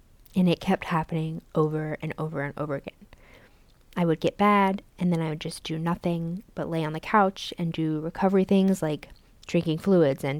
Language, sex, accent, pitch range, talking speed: English, female, American, 160-190 Hz, 195 wpm